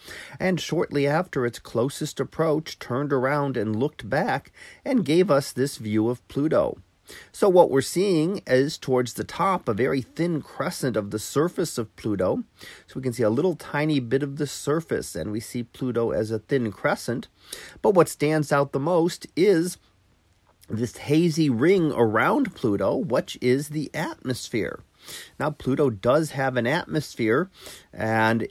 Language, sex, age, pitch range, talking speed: English, male, 40-59, 110-145 Hz, 160 wpm